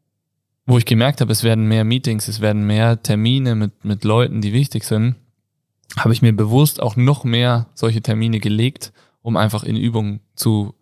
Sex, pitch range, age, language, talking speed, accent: male, 110-125 Hz, 20-39, German, 185 wpm, German